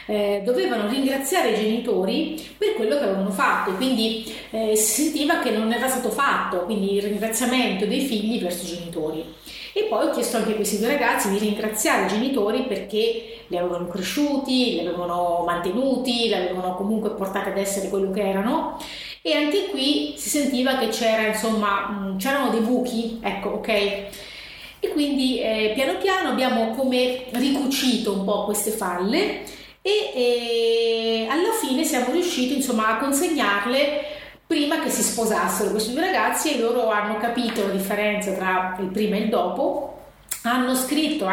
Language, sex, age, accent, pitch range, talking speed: Italian, female, 30-49, native, 200-260 Hz, 160 wpm